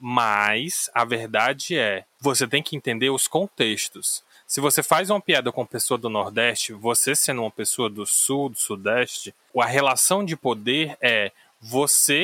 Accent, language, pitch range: Brazilian, Portuguese, 120-155 Hz